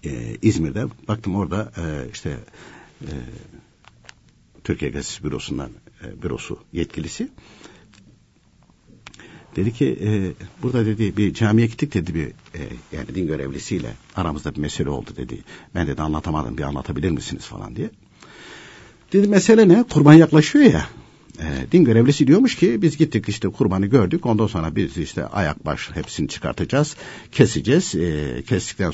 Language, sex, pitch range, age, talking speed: Turkish, male, 95-150 Hz, 60-79, 135 wpm